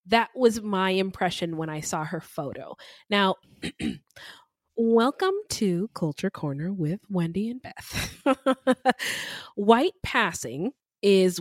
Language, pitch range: English, 170-225 Hz